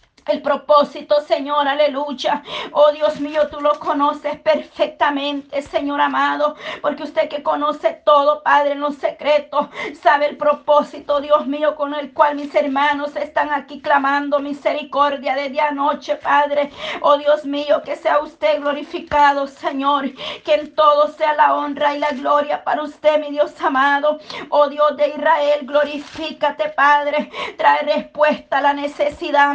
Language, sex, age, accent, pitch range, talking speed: Spanish, female, 40-59, American, 290-300 Hz, 150 wpm